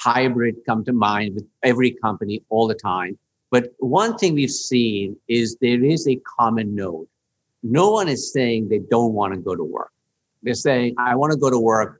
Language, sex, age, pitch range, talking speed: English, male, 50-69, 110-135 Hz, 200 wpm